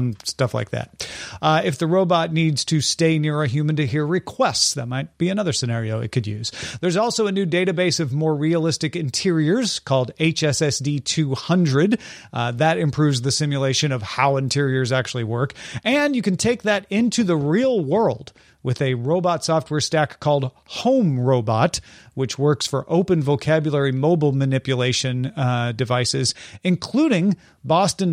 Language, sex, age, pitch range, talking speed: English, male, 40-59, 135-175 Hz, 160 wpm